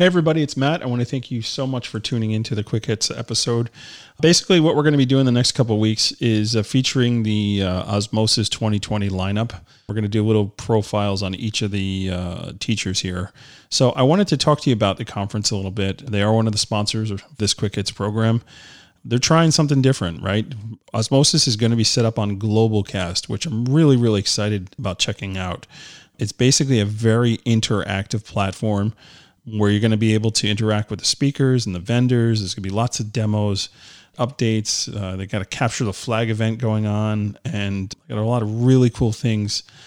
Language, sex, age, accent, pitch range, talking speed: English, male, 30-49, American, 105-125 Hz, 215 wpm